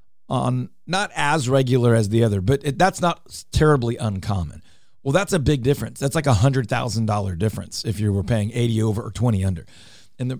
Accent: American